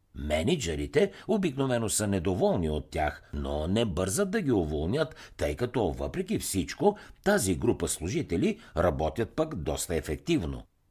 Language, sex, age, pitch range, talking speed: Bulgarian, male, 60-79, 85-135 Hz, 125 wpm